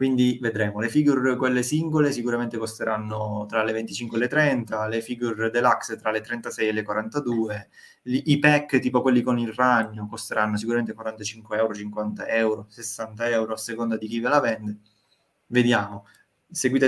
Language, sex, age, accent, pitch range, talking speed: Italian, male, 20-39, native, 110-125 Hz, 165 wpm